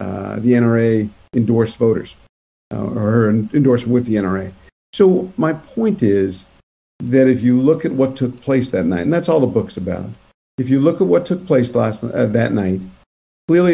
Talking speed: 190 wpm